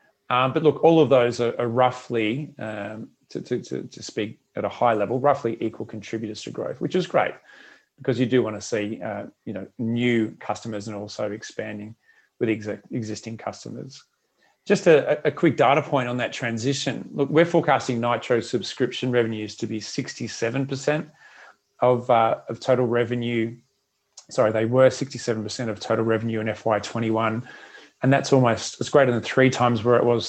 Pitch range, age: 110-135 Hz, 30-49